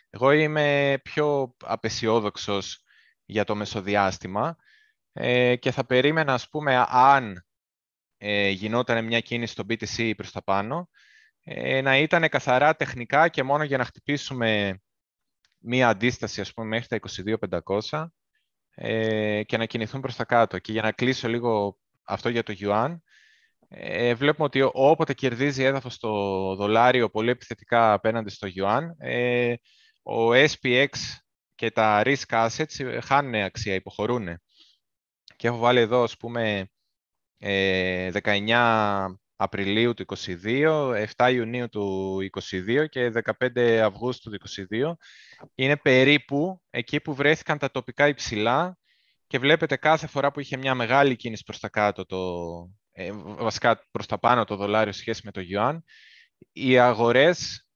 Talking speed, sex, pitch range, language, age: 135 wpm, male, 105-135 Hz, Greek, 20-39